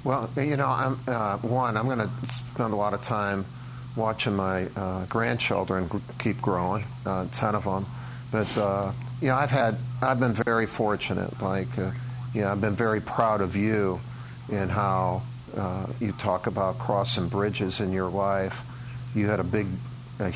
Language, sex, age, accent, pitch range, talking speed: English, male, 50-69, American, 100-125 Hz, 185 wpm